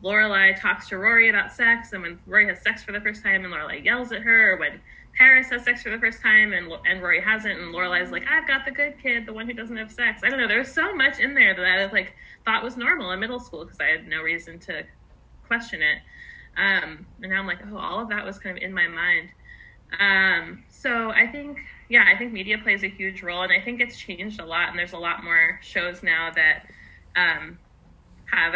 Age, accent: 20-39, American